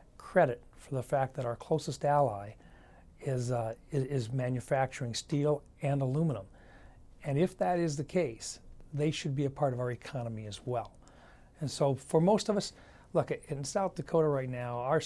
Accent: American